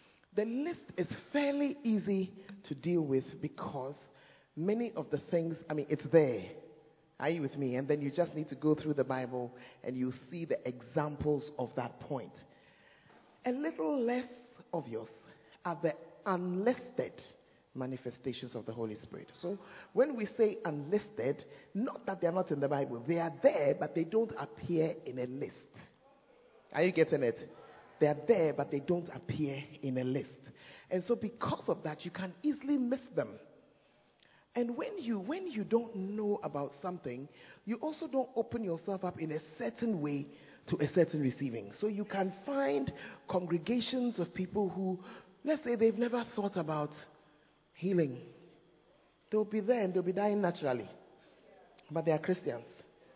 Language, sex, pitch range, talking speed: English, male, 145-210 Hz, 165 wpm